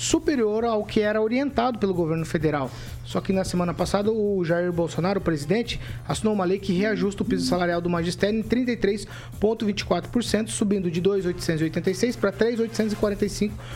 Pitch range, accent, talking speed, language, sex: 175-220 Hz, Brazilian, 150 wpm, Portuguese, male